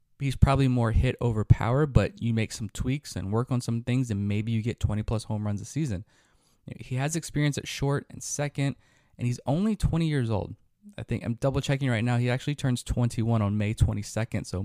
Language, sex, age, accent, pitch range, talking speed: English, male, 20-39, American, 105-130 Hz, 220 wpm